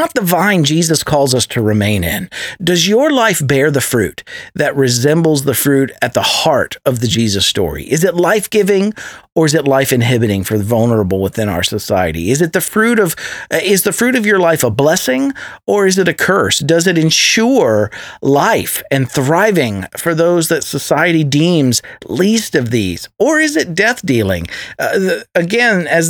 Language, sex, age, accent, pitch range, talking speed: English, male, 50-69, American, 115-175 Hz, 185 wpm